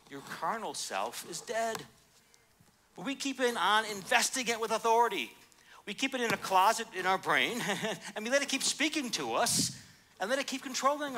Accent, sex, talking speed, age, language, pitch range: American, male, 195 wpm, 60-79, English, 140-215 Hz